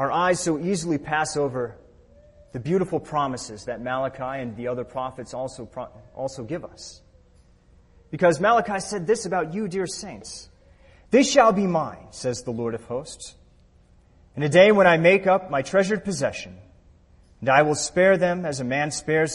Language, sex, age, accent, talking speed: English, male, 30-49, American, 175 wpm